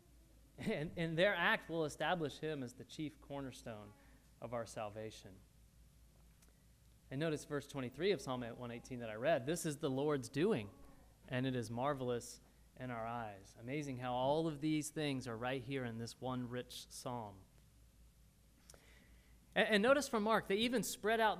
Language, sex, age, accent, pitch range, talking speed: English, male, 30-49, American, 130-185 Hz, 165 wpm